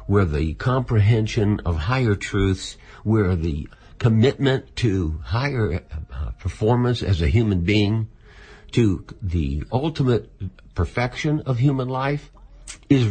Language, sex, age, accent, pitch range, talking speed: English, male, 60-79, American, 85-130 Hz, 115 wpm